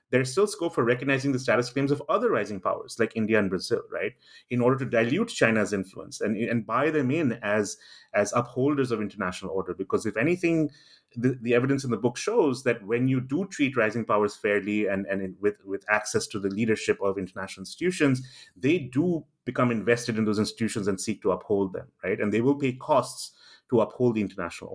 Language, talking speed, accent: English, 205 wpm, Indian